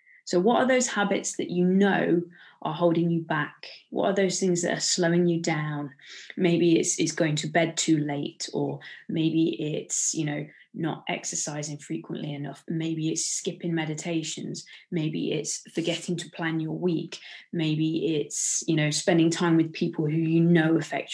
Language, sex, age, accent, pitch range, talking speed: English, female, 20-39, British, 165-195 Hz, 175 wpm